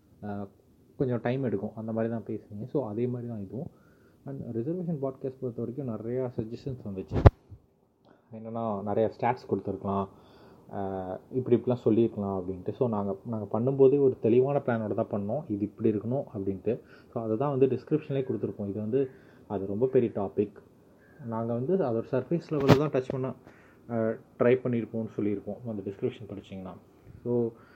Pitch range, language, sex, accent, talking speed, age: 105-130 Hz, Tamil, male, native, 145 wpm, 20-39